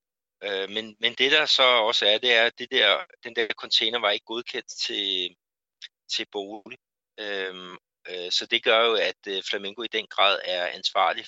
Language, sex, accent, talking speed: Danish, male, native, 165 wpm